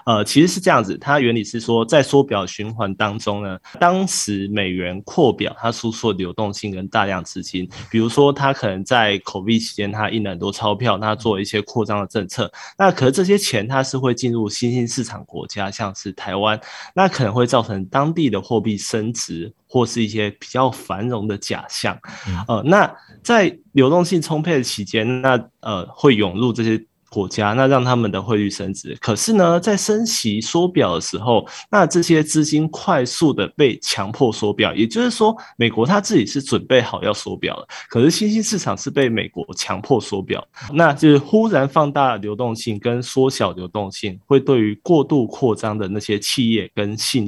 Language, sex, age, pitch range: Chinese, male, 20-39, 105-135 Hz